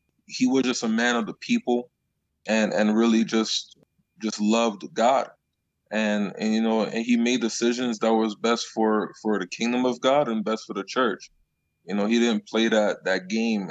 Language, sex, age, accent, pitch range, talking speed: English, male, 20-39, American, 110-125 Hz, 195 wpm